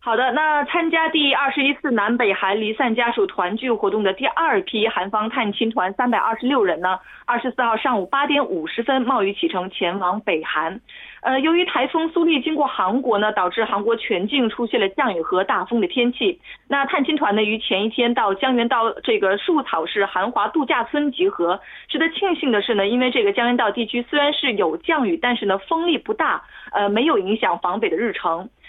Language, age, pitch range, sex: Korean, 30-49, 215-310 Hz, female